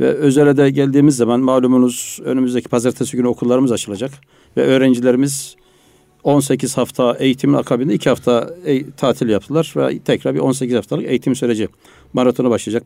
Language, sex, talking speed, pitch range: Turkish, male, 140 wpm, 125-150 Hz